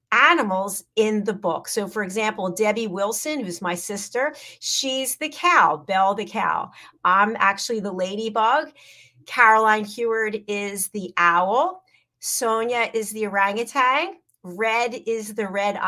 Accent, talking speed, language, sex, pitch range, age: American, 130 wpm, English, female, 195-245 Hz, 40-59